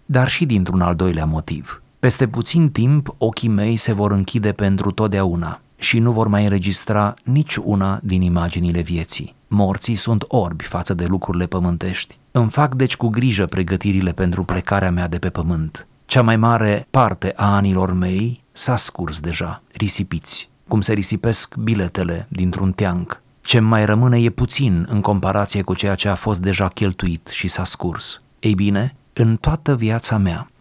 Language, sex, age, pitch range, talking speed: Romanian, male, 30-49, 95-120 Hz, 165 wpm